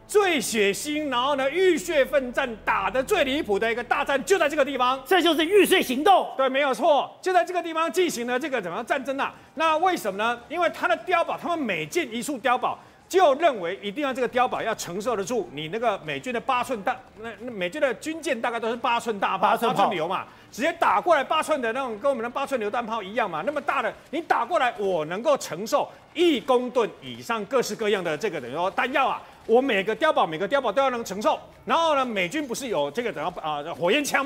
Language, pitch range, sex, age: Chinese, 235-315 Hz, male, 40-59